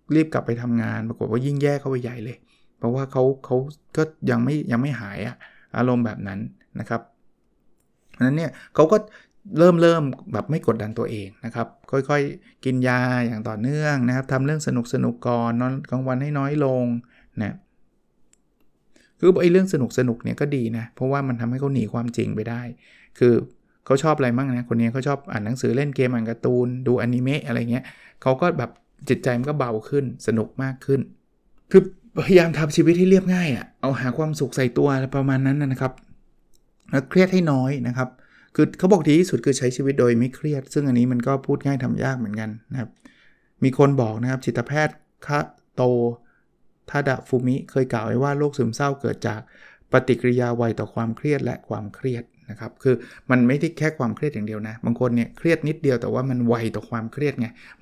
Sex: male